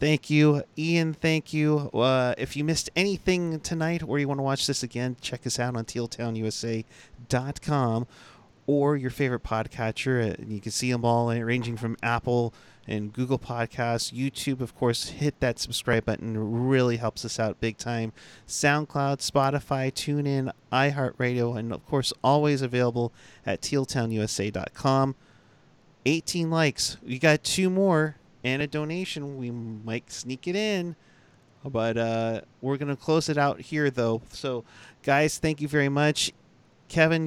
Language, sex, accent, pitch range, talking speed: English, male, American, 115-145 Hz, 150 wpm